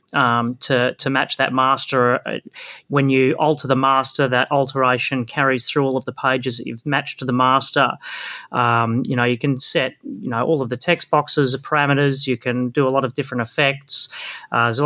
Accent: Australian